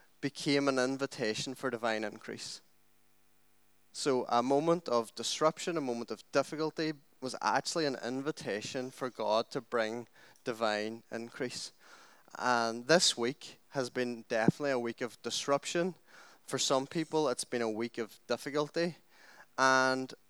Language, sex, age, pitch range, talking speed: English, male, 20-39, 115-145 Hz, 135 wpm